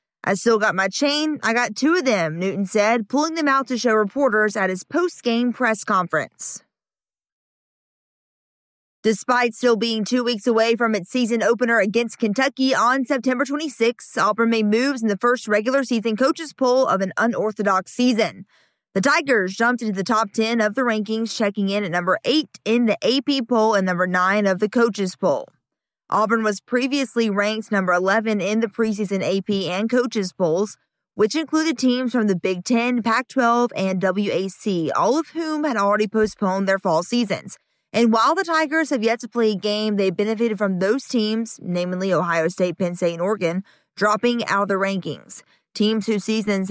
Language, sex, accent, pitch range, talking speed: English, female, American, 200-240 Hz, 180 wpm